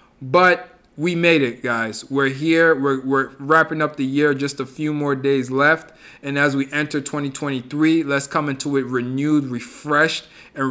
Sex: male